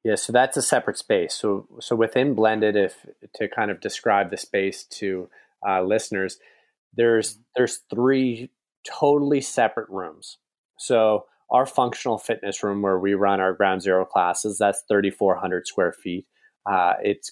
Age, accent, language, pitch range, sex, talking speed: 30-49, American, English, 95-110 Hz, male, 150 wpm